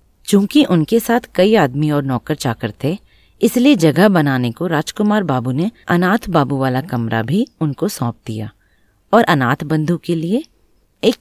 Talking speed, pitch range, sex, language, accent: 160 wpm, 125-205 Hz, female, Hindi, native